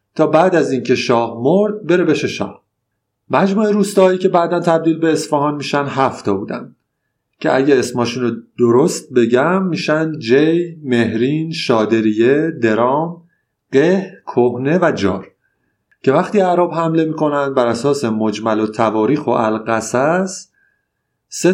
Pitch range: 115-160 Hz